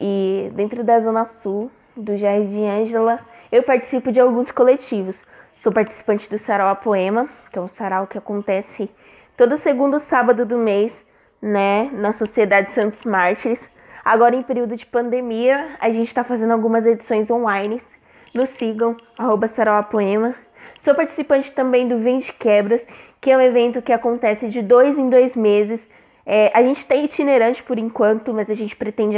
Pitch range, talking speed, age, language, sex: 215-255 Hz, 170 wpm, 20-39, Portuguese, female